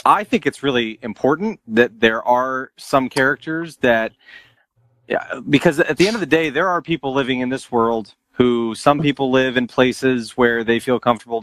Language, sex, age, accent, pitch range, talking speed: English, male, 30-49, American, 105-130 Hz, 185 wpm